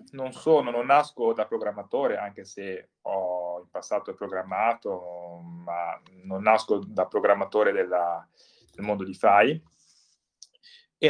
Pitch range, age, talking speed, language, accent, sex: 95-125 Hz, 20-39, 125 wpm, Italian, native, male